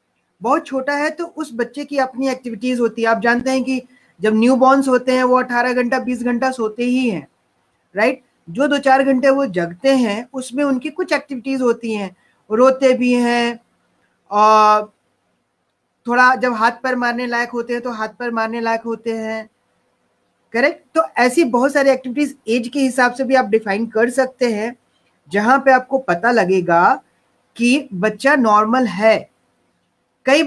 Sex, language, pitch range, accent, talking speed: female, Hindi, 230-275 Hz, native, 170 wpm